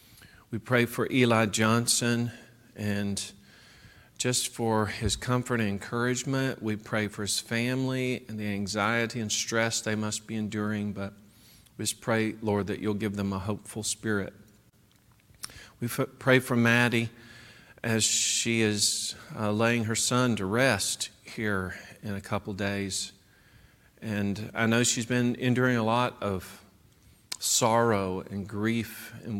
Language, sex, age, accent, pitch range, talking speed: English, male, 40-59, American, 105-120 Hz, 140 wpm